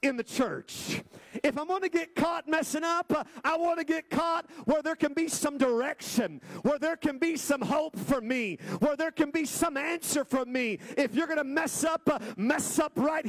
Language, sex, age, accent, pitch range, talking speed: English, male, 40-59, American, 220-325 Hz, 220 wpm